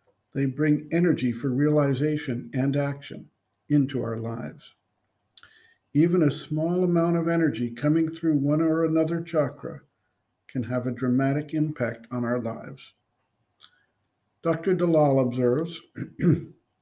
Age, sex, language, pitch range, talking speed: 50-69, male, English, 130-165 Hz, 120 wpm